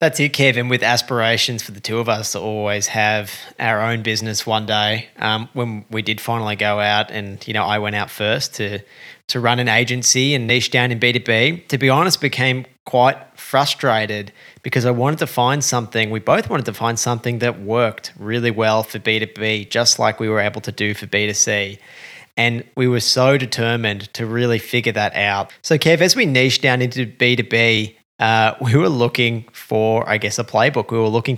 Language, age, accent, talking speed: English, 20-39, Australian, 200 wpm